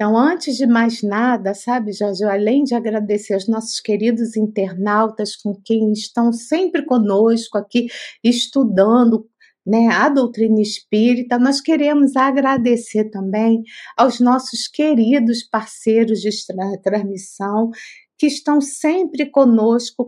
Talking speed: 115 wpm